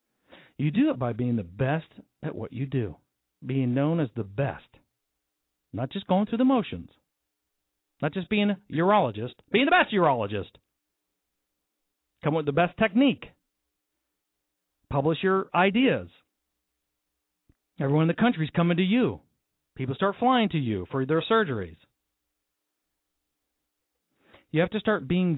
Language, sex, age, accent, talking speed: English, male, 50-69, American, 145 wpm